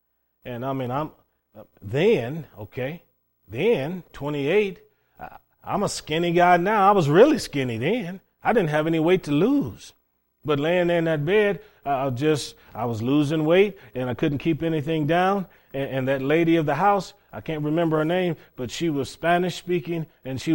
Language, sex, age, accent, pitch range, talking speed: English, male, 30-49, American, 125-160 Hz, 180 wpm